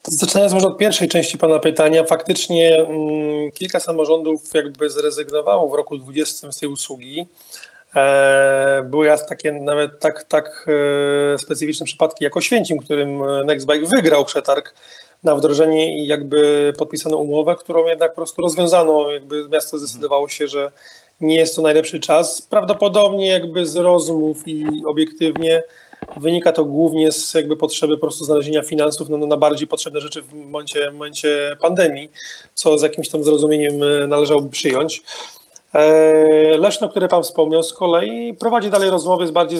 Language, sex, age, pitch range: Polish, male, 30-49, 150-170 Hz